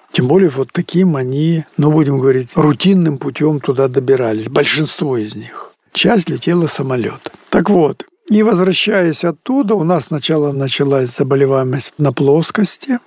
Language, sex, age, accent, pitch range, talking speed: Russian, male, 60-79, native, 130-170 Hz, 140 wpm